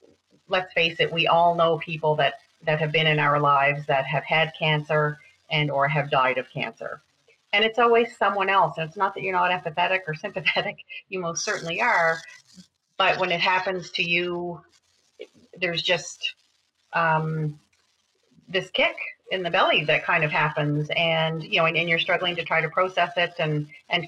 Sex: female